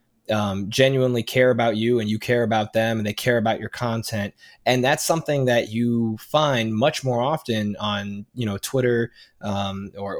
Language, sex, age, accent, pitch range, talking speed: English, male, 20-39, American, 110-130 Hz, 180 wpm